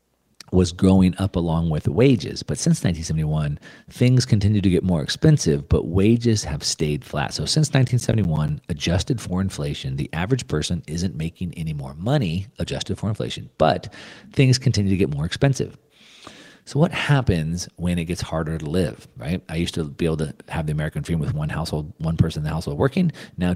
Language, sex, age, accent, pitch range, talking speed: English, male, 40-59, American, 80-110 Hz, 190 wpm